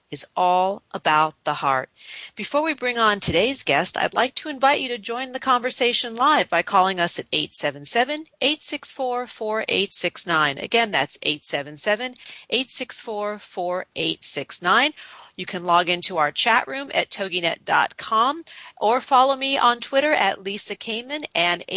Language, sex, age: English, female, 40-59